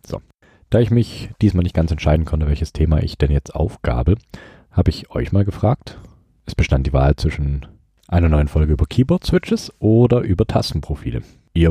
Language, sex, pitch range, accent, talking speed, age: German, male, 80-110 Hz, German, 170 wpm, 40-59